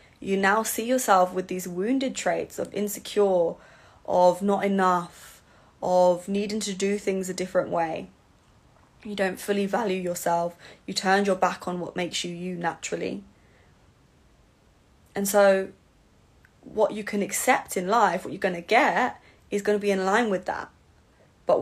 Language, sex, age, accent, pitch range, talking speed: English, female, 20-39, British, 180-210 Hz, 160 wpm